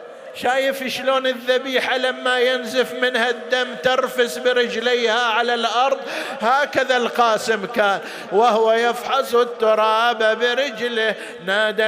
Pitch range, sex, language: 220-255 Hz, male, Arabic